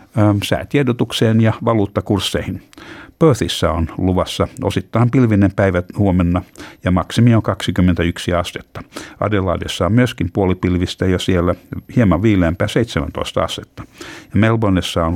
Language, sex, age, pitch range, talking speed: Finnish, male, 60-79, 90-115 Hz, 110 wpm